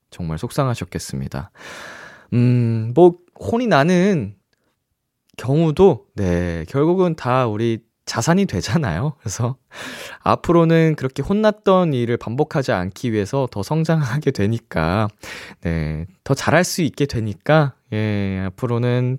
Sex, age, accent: male, 20-39, native